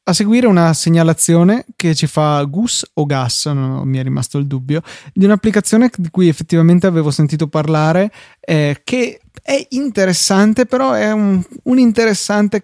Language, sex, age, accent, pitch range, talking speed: Italian, male, 20-39, native, 150-185 Hz, 155 wpm